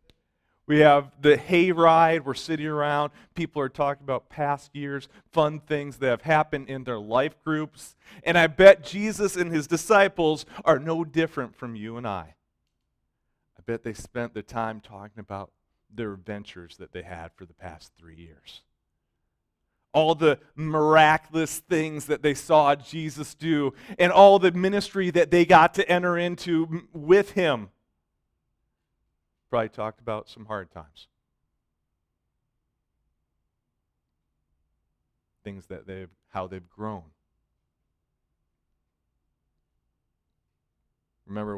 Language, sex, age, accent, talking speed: English, male, 40-59, American, 125 wpm